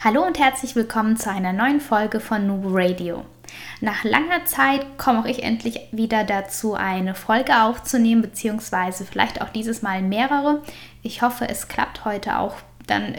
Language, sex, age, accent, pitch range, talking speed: German, female, 10-29, German, 205-250 Hz, 160 wpm